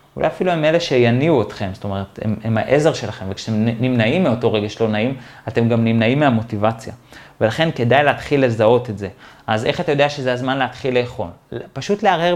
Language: Hebrew